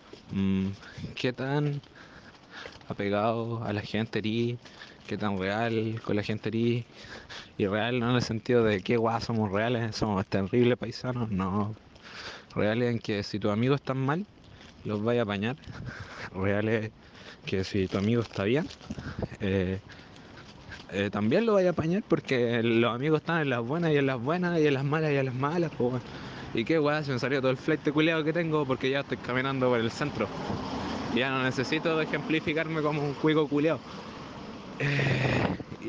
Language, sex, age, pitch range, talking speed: Spanish, male, 20-39, 110-145 Hz, 175 wpm